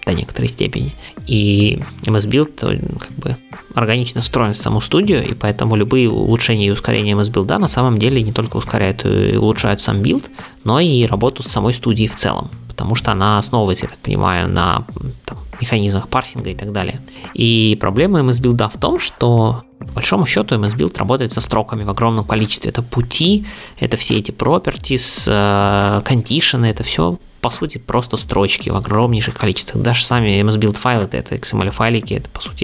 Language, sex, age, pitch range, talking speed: Russian, male, 20-39, 105-125 Hz, 165 wpm